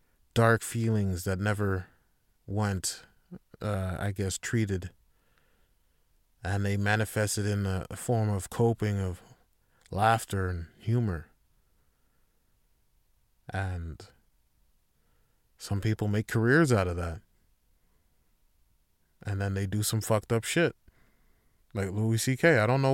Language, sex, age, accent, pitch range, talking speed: English, male, 30-49, American, 95-120 Hz, 115 wpm